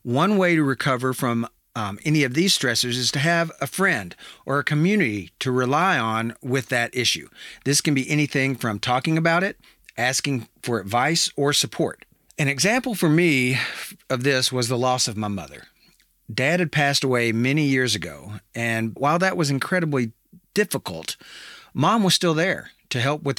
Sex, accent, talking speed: male, American, 175 wpm